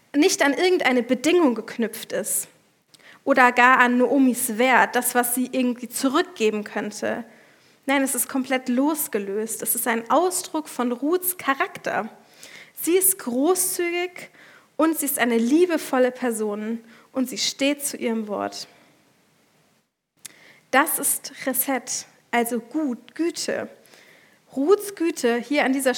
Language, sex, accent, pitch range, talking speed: German, female, German, 240-300 Hz, 125 wpm